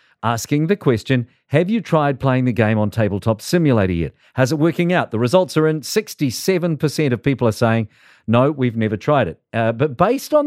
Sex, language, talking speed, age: male, English, 200 wpm, 50-69